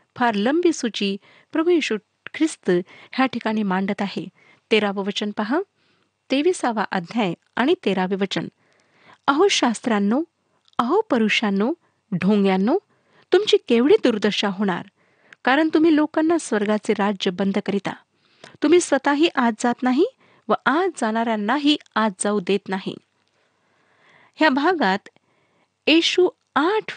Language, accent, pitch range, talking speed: Marathi, native, 200-295 Hz, 110 wpm